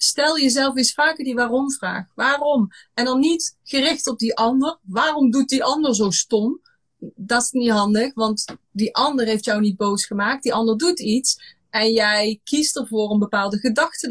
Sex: female